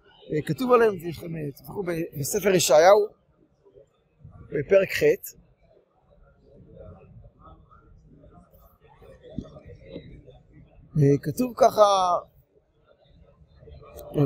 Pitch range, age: 205-320 Hz, 60-79